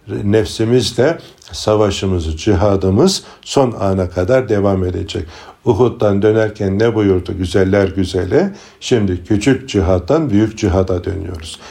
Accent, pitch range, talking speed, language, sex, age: native, 90-115 Hz, 100 wpm, Turkish, male, 60-79